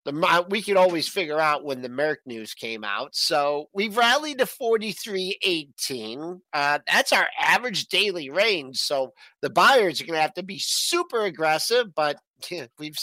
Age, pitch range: 50-69, 150-210 Hz